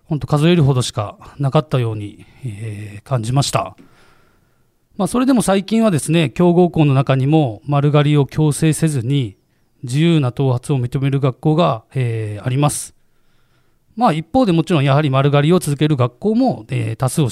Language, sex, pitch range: Japanese, male, 120-155 Hz